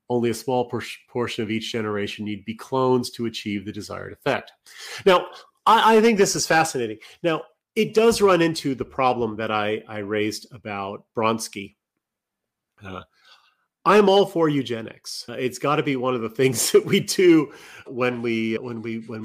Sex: male